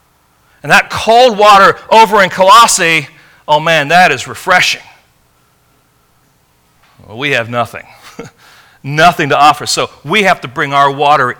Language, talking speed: English, 135 wpm